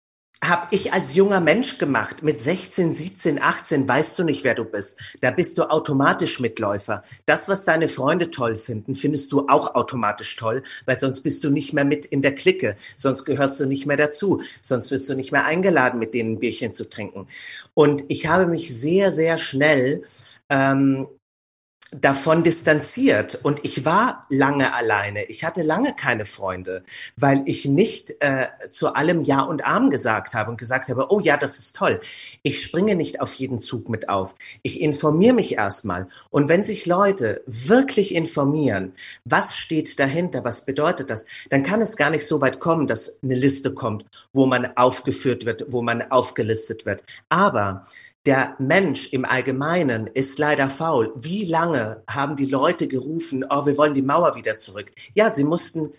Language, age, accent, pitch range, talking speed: German, 40-59, German, 125-165 Hz, 180 wpm